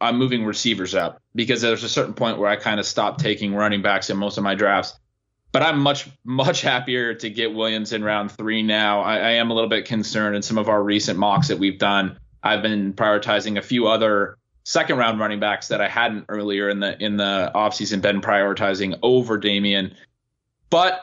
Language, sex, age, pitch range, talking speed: English, male, 20-39, 105-130 Hz, 210 wpm